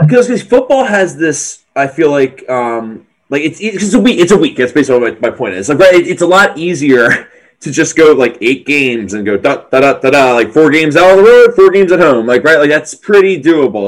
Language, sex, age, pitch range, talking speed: English, male, 20-39, 125-190 Hz, 250 wpm